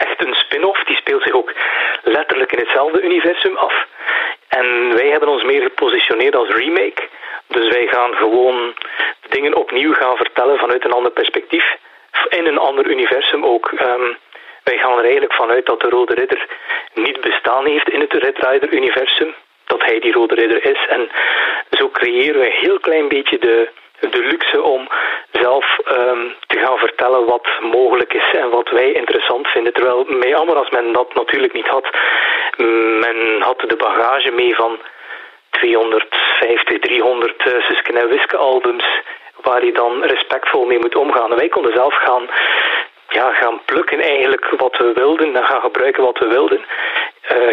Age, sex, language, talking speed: 40-59, male, Dutch, 165 wpm